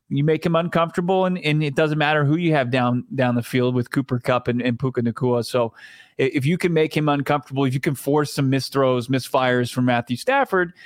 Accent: American